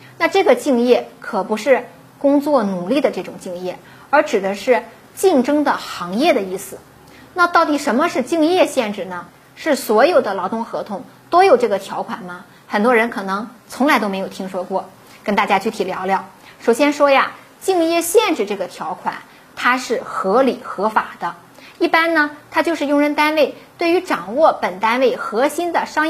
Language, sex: Chinese, female